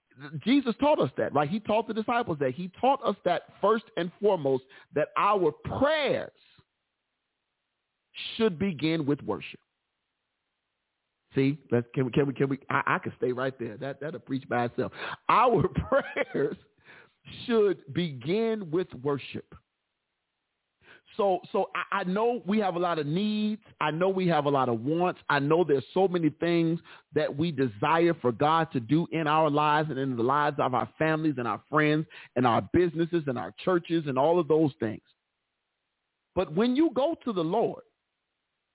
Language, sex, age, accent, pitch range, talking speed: English, male, 40-59, American, 140-200 Hz, 175 wpm